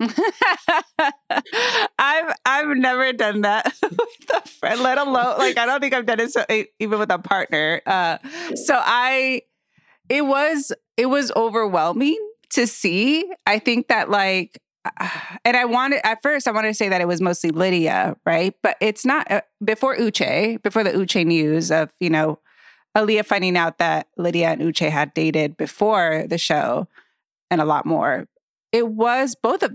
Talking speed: 165 wpm